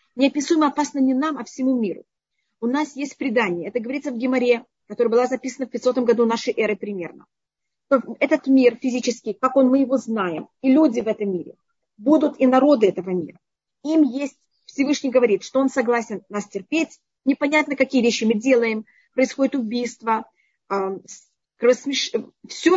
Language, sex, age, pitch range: Russian, female, 30-49, 225-275 Hz